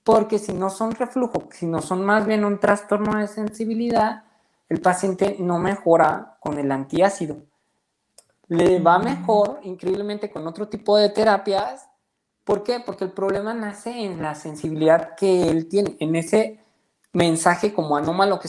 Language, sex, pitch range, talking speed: Spanish, male, 165-210 Hz, 155 wpm